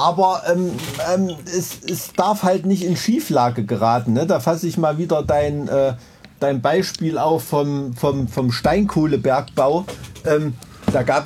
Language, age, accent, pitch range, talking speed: German, 50-69, German, 135-170 Hz, 155 wpm